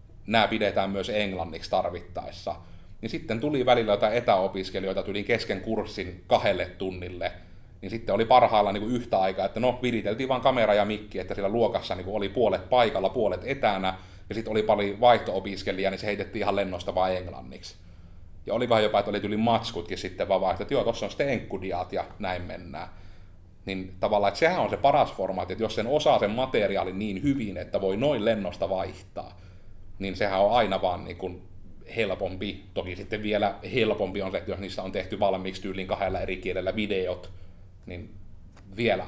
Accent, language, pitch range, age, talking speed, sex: native, Finnish, 95-105 Hz, 30-49, 180 wpm, male